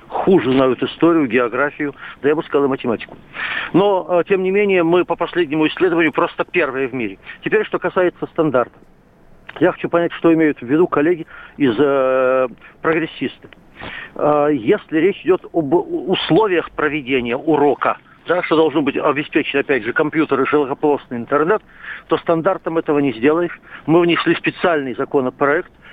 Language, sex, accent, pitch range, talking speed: Russian, male, native, 140-175 Hz, 150 wpm